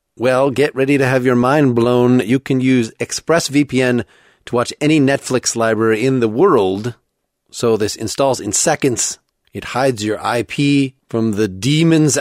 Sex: male